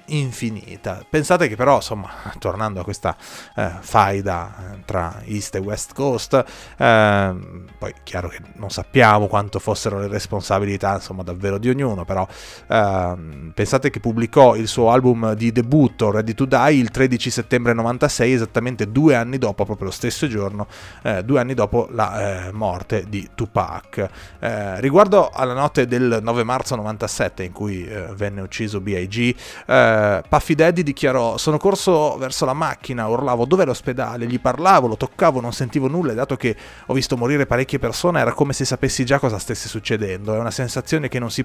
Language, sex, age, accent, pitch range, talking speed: Italian, male, 30-49, native, 100-130 Hz, 170 wpm